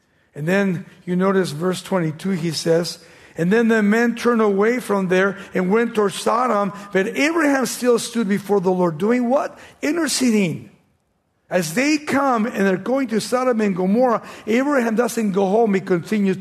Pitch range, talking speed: 165-225 Hz, 170 wpm